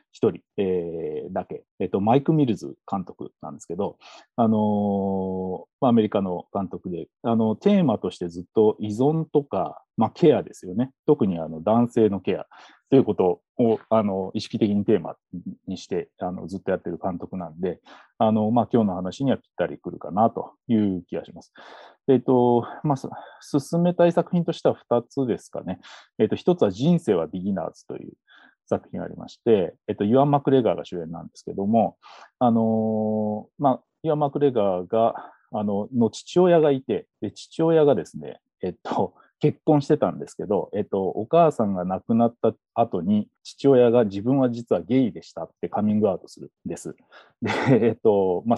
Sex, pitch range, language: male, 105-145 Hz, Japanese